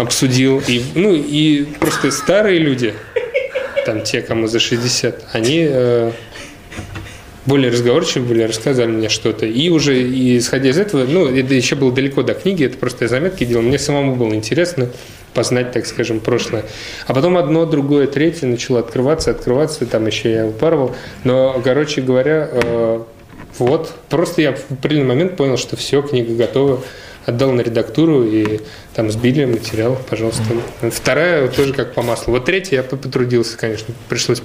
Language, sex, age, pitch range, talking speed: Russian, male, 20-39, 115-140 Hz, 160 wpm